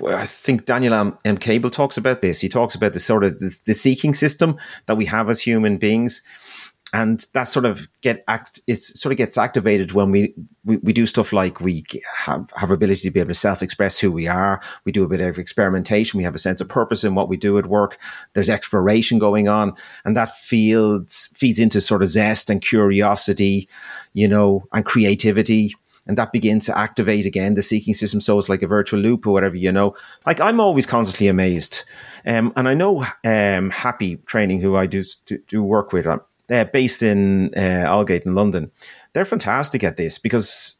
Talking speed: 205 wpm